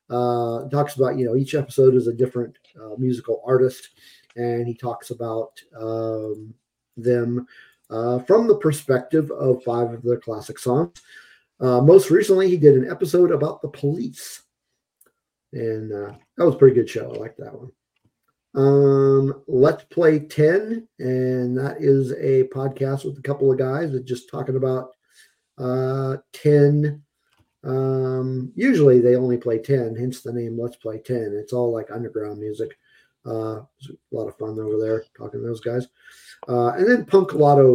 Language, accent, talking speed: English, American, 165 wpm